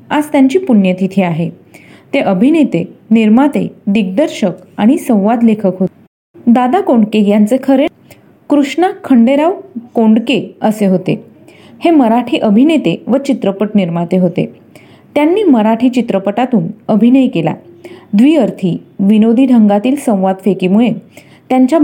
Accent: native